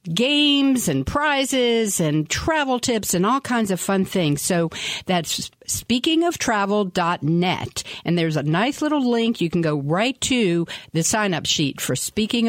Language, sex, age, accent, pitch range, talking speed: English, female, 50-69, American, 170-240 Hz, 165 wpm